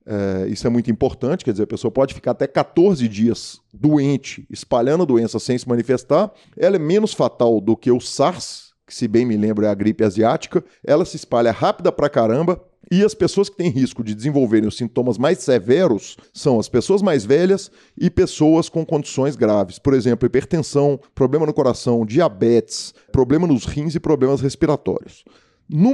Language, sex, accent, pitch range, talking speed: Portuguese, male, Brazilian, 115-165 Hz, 185 wpm